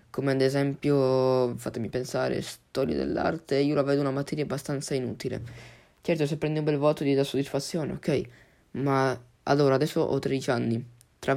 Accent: native